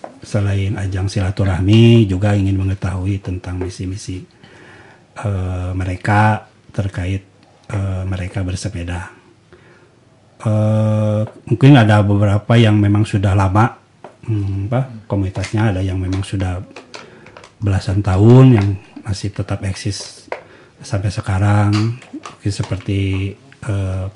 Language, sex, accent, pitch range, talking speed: Indonesian, male, native, 95-110 Hz, 95 wpm